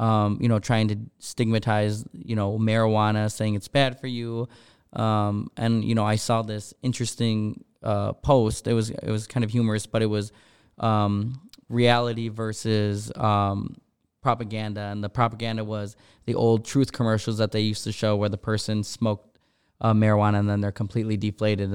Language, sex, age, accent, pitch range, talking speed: English, male, 20-39, American, 105-120 Hz, 175 wpm